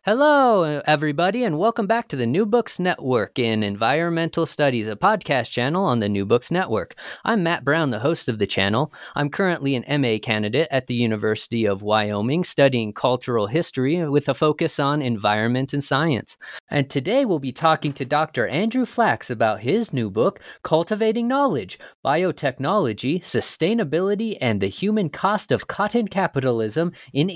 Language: English